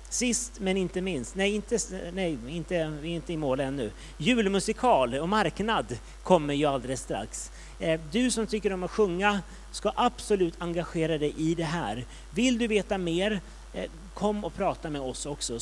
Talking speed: 170 wpm